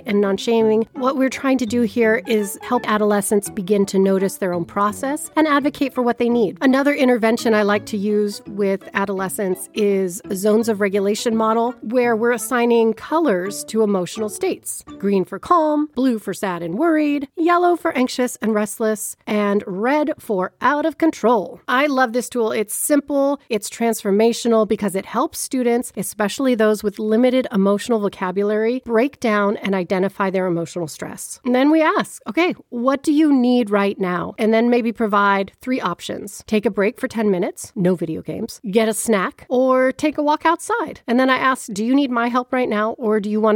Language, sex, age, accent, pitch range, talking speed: English, female, 40-59, American, 200-255 Hz, 190 wpm